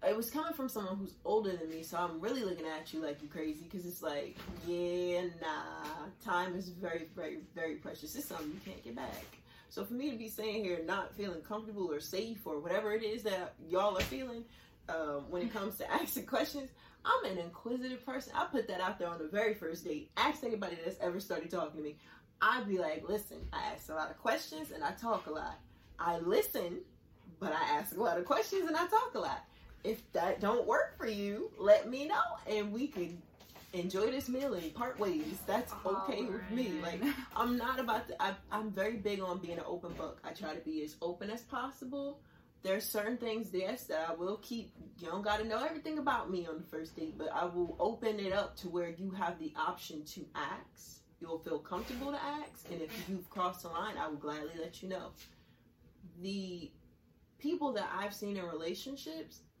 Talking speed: 215 wpm